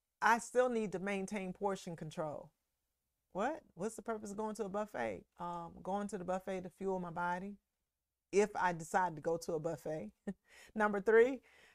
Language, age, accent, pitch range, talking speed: English, 40-59, American, 175-220 Hz, 180 wpm